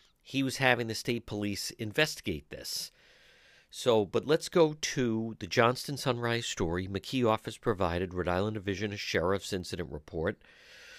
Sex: male